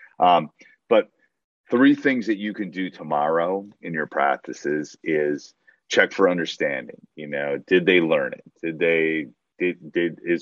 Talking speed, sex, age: 155 wpm, male, 30-49